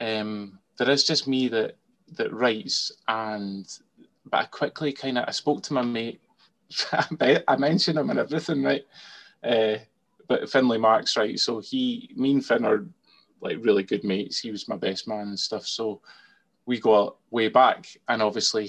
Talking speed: 180 wpm